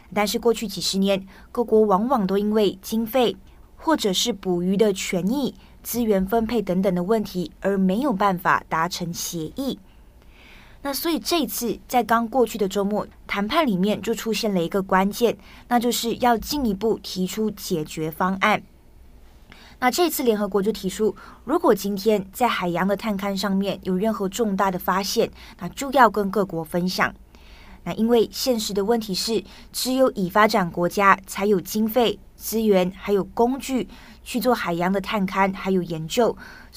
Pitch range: 185-230 Hz